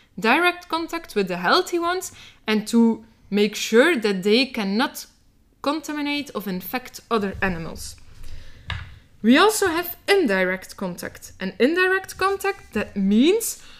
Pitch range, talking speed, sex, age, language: 210-305 Hz, 120 wpm, female, 20-39, English